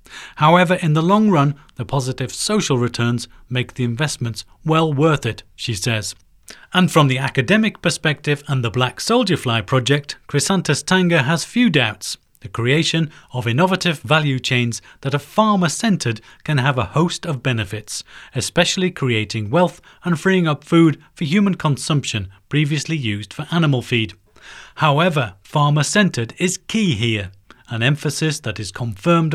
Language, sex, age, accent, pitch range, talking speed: English, male, 30-49, British, 120-165 Hz, 150 wpm